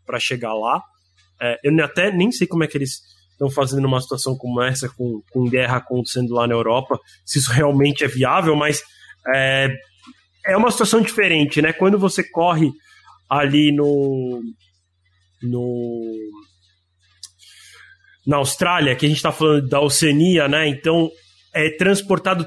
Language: Portuguese